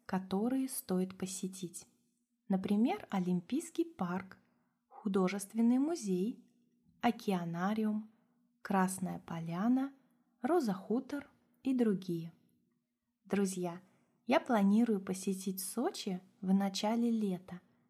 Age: 20-39